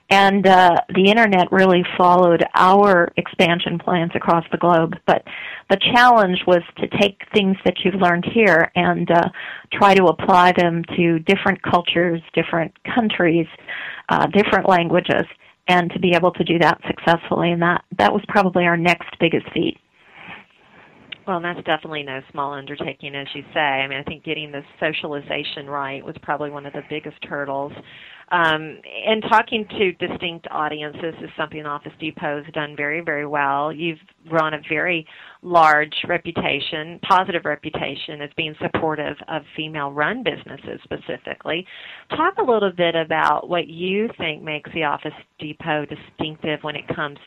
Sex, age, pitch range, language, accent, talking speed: female, 40-59, 150-180 Hz, English, American, 155 wpm